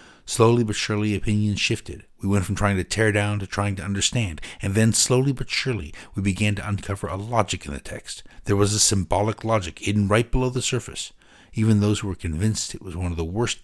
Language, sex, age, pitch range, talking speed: English, male, 60-79, 90-110 Hz, 225 wpm